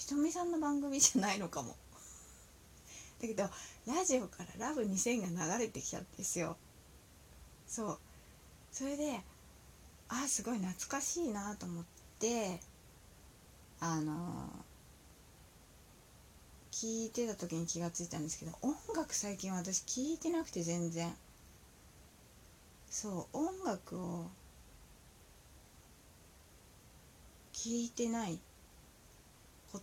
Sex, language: female, Japanese